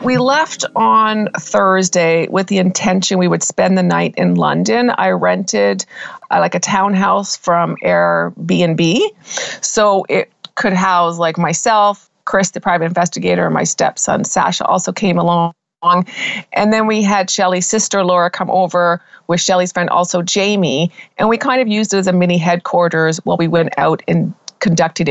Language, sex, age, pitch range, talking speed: English, female, 40-59, 170-205 Hz, 165 wpm